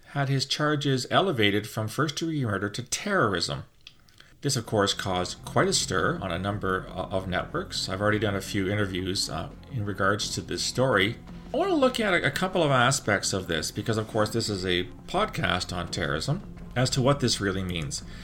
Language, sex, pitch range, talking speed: English, male, 95-130 Hz, 195 wpm